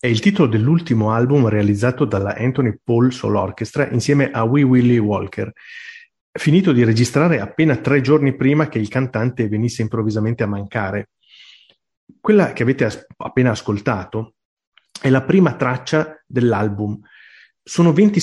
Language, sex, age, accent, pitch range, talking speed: Italian, male, 30-49, native, 115-155 Hz, 140 wpm